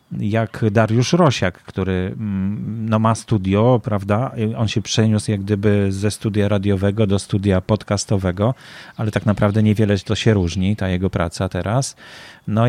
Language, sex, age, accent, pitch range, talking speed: Polish, male, 30-49, native, 100-120 Hz, 140 wpm